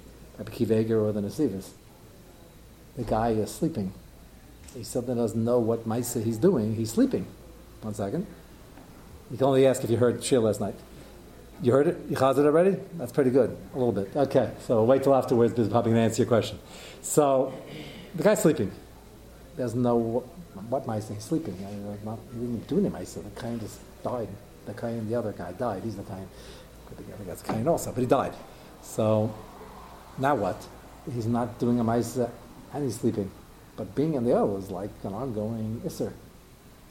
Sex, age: male, 50-69